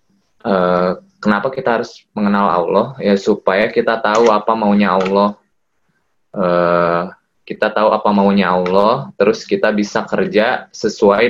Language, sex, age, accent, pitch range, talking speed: Indonesian, male, 20-39, native, 95-110 Hz, 125 wpm